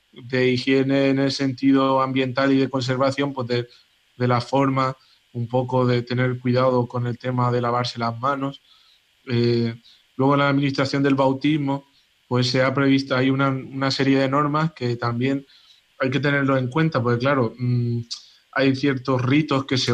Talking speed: 170 wpm